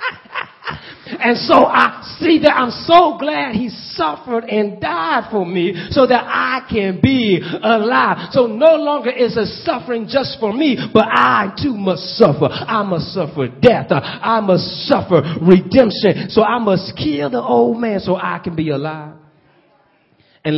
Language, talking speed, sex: English, 160 wpm, male